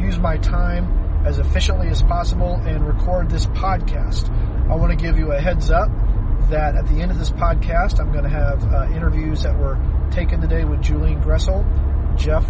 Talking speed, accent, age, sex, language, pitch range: 190 wpm, American, 40-59, male, English, 75-95 Hz